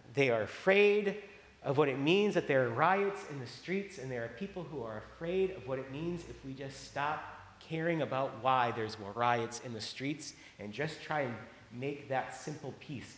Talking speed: 210 wpm